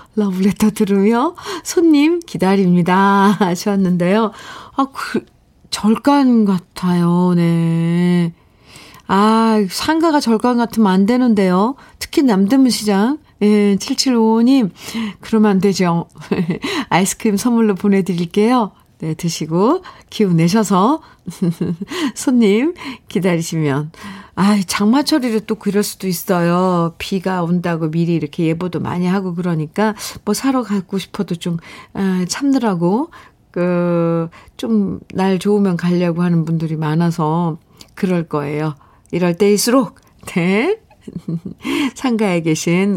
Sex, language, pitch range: female, Korean, 175-235 Hz